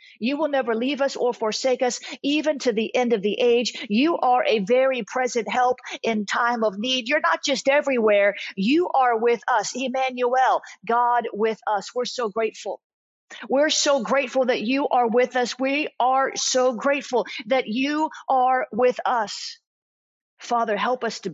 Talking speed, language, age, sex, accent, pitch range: 170 wpm, English, 50-69, female, American, 235-270 Hz